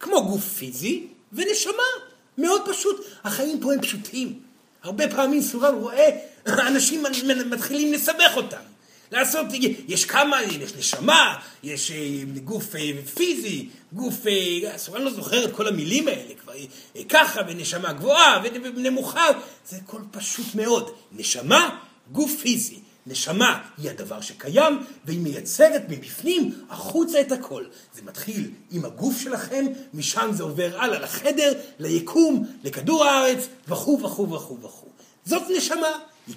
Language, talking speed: Hebrew, 125 wpm